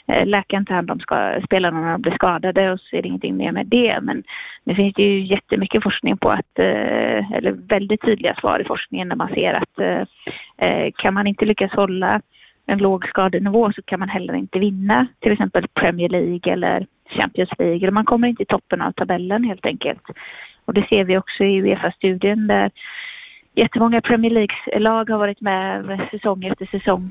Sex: female